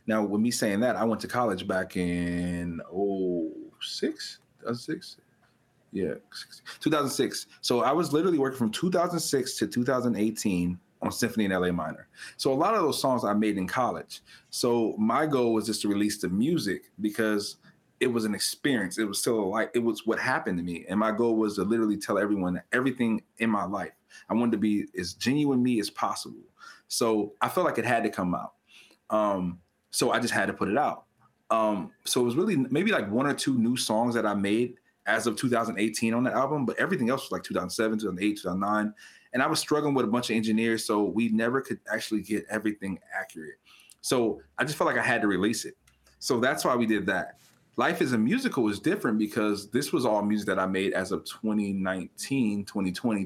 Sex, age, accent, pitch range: male, 30-49, American, 100-120 Hz